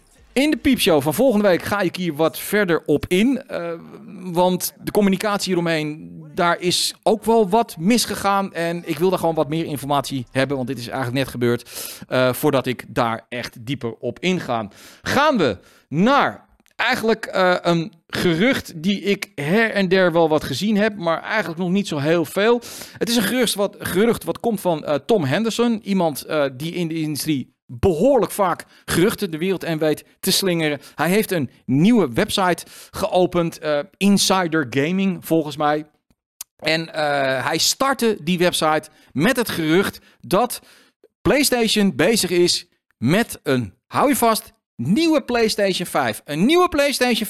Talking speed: 165 wpm